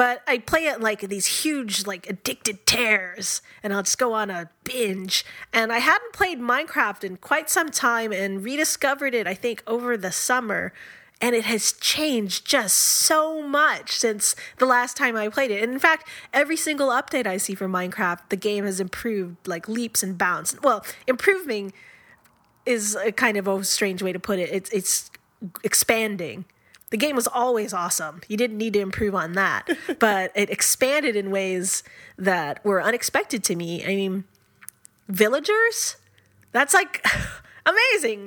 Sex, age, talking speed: female, 20-39, 170 wpm